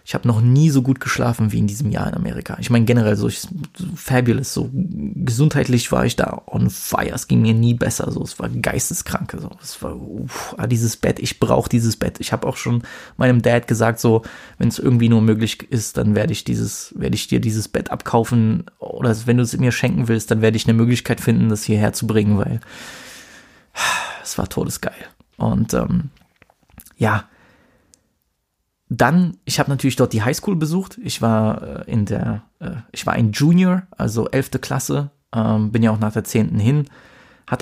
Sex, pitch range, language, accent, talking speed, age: male, 110-135 Hz, German, German, 190 wpm, 20-39